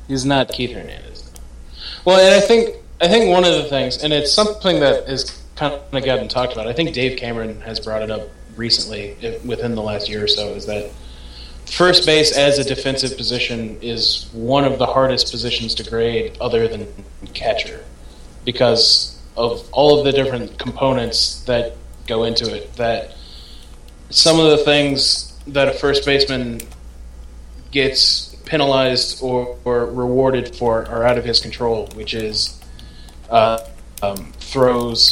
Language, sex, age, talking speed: English, male, 20-39, 160 wpm